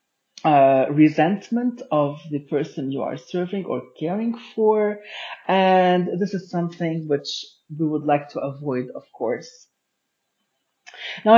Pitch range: 150-195 Hz